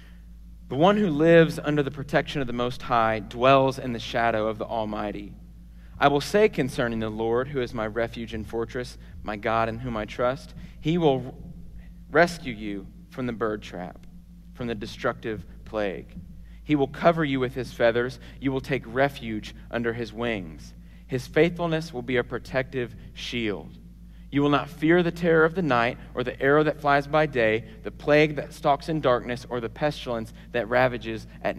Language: English